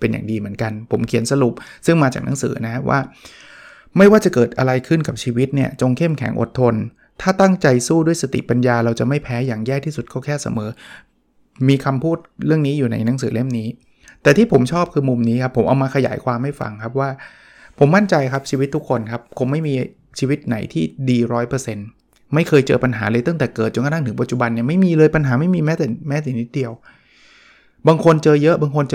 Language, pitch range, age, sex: Thai, 120-155 Hz, 20-39, male